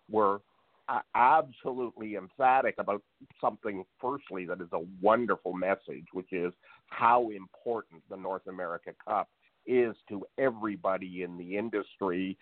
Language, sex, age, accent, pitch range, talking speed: English, male, 50-69, American, 95-115 Hz, 120 wpm